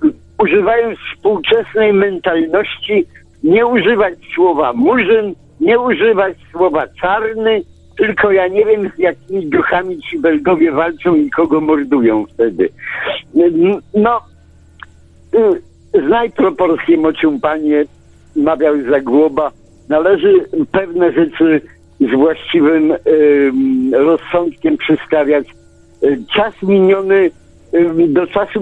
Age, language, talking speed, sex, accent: 60-79, Polish, 95 wpm, male, native